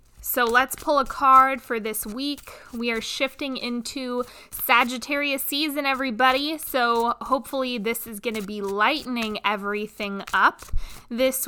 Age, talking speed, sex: 20-39, 135 wpm, female